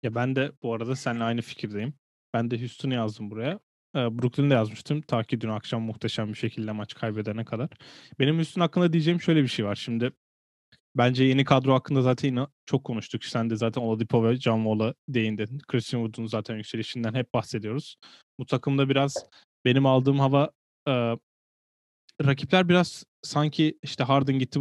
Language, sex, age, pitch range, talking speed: Turkish, male, 20-39, 115-140 Hz, 170 wpm